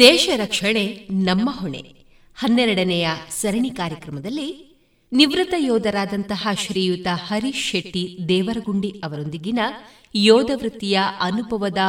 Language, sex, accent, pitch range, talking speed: Kannada, female, native, 180-235 Hz, 80 wpm